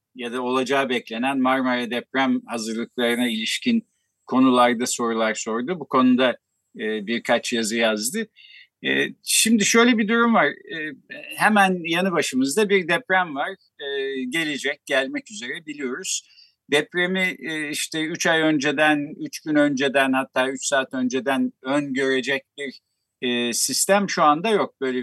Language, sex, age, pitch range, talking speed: Turkish, male, 50-69, 130-200 Hz, 120 wpm